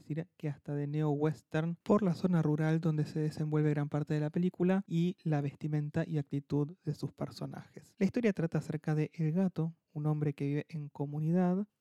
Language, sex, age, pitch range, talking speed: Spanish, male, 30-49, 155-185 Hz, 200 wpm